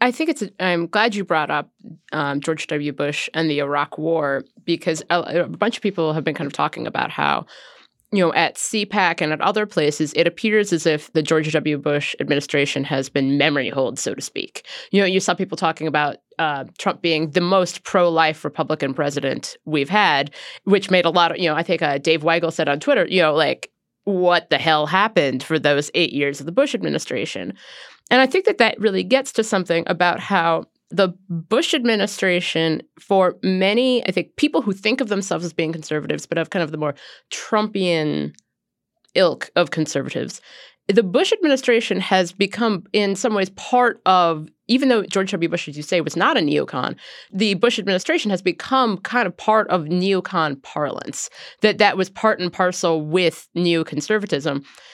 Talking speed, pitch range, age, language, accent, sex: 190 wpm, 160-210 Hz, 30-49, English, American, female